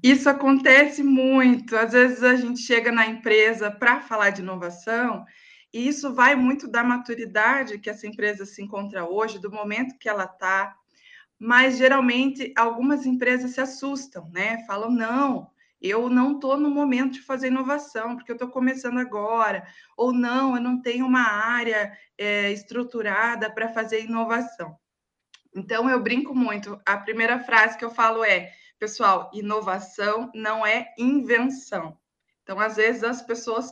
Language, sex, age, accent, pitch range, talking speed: Portuguese, female, 20-39, Brazilian, 210-250 Hz, 150 wpm